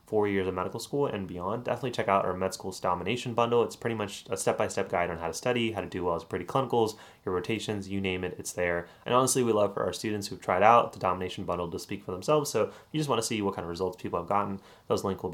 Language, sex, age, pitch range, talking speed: English, male, 30-49, 90-115 Hz, 280 wpm